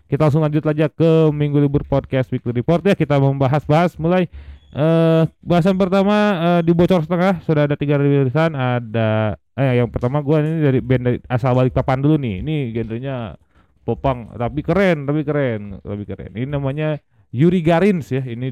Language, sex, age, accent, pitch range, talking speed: Indonesian, male, 30-49, native, 110-150 Hz, 170 wpm